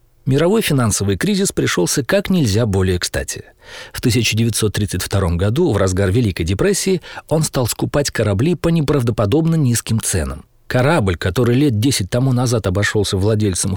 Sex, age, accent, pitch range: male, 40-59, native, 100-150 Hz